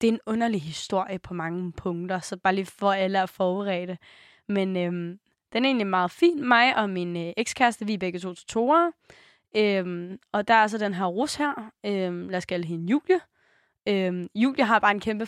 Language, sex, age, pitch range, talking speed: Danish, female, 20-39, 185-250 Hz, 210 wpm